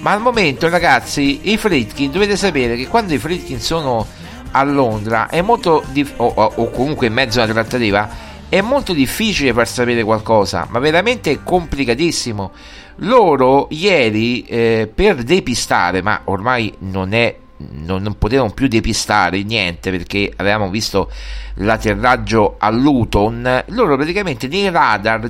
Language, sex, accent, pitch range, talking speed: Italian, male, native, 105-145 Hz, 145 wpm